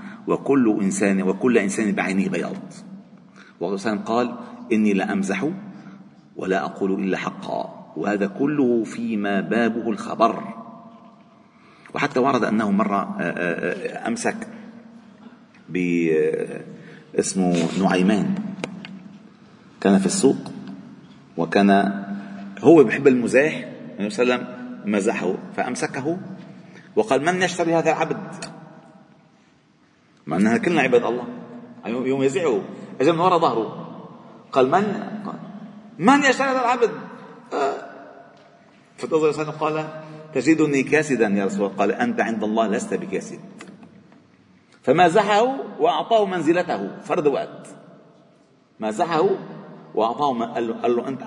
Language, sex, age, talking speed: Arabic, male, 40-59, 105 wpm